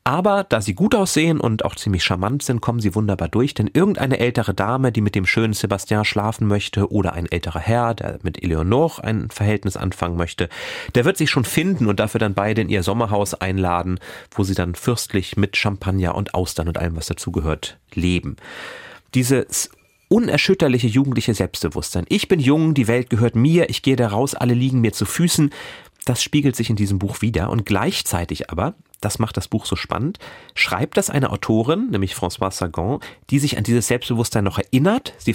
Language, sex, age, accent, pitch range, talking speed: German, male, 30-49, German, 100-135 Hz, 195 wpm